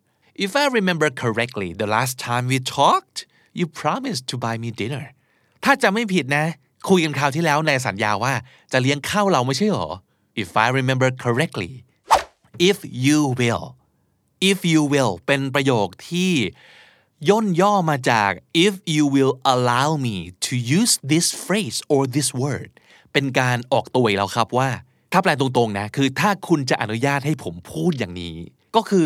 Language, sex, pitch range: Thai, male, 115-160 Hz